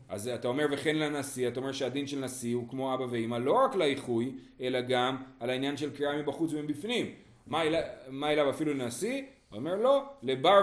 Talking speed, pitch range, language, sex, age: 200 wpm, 125-175 Hz, Hebrew, male, 30-49